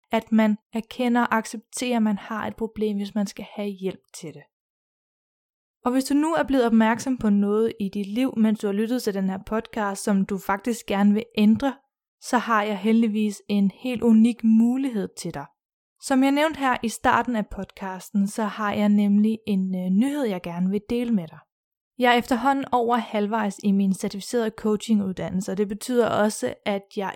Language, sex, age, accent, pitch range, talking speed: Danish, female, 20-39, native, 205-240 Hz, 195 wpm